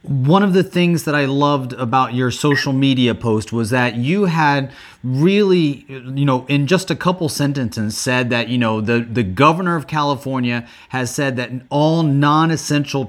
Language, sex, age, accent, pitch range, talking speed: English, male, 30-49, American, 120-140 Hz, 175 wpm